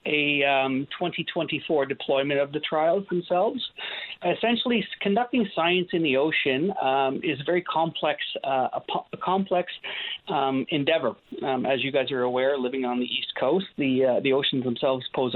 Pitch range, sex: 135-170 Hz, male